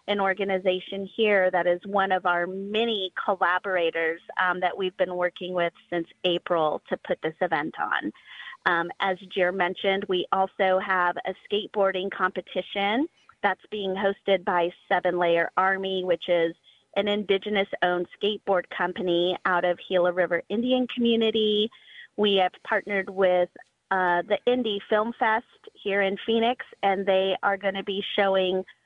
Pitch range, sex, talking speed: 180-210 Hz, female, 150 wpm